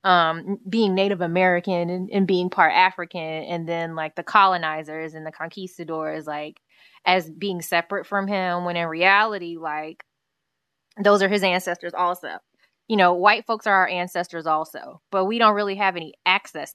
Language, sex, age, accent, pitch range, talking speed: English, female, 20-39, American, 160-195 Hz, 170 wpm